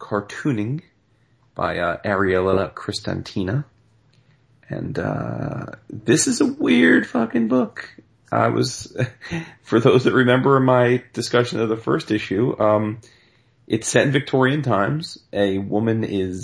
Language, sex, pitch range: English, male, 105-130 Hz